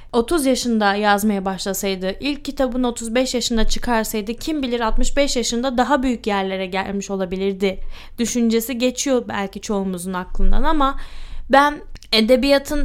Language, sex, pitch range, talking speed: Turkish, female, 210-255 Hz, 120 wpm